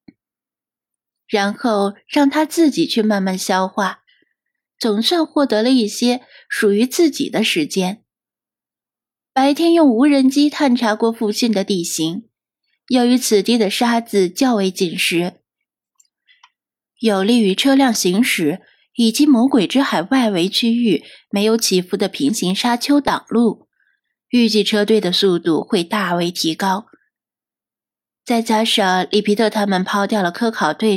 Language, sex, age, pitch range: Chinese, female, 20-39, 200-275 Hz